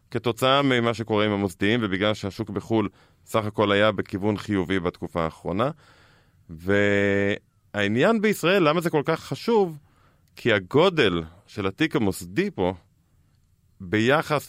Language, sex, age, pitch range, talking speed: Hebrew, male, 30-49, 100-130 Hz, 120 wpm